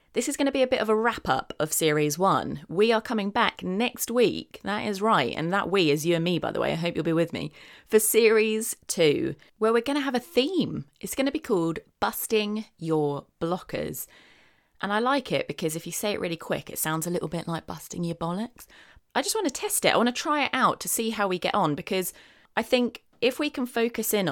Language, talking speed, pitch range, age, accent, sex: English, 255 wpm, 165-230 Hz, 30-49, British, female